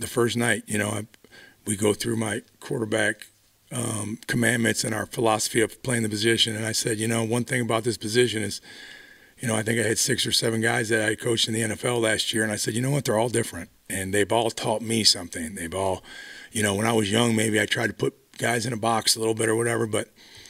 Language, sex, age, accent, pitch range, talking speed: English, male, 40-59, American, 110-130 Hz, 255 wpm